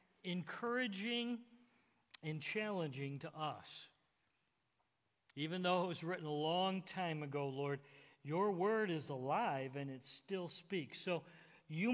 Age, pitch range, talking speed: 50-69, 140-185 Hz, 125 wpm